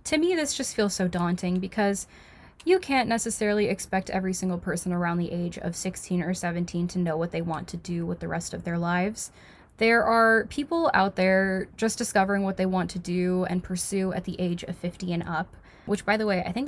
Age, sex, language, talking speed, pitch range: 10-29, female, English, 225 wpm, 180-210 Hz